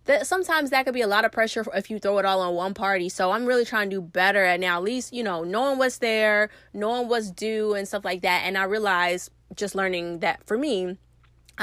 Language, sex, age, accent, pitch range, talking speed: English, female, 20-39, American, 175-235 Hz, 255 wpm